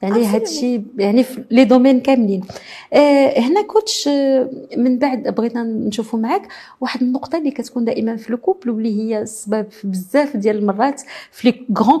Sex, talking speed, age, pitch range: female, 145 wpm, 40-59, 215-275 Hz